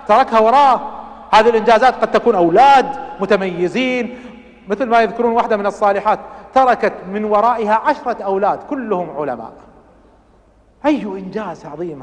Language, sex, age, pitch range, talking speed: Arabic, male, 40-59, 190-245 Hz, 120 wpm